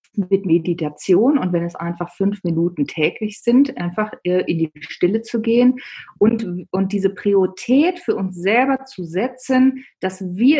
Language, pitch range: German, 185-245 Hz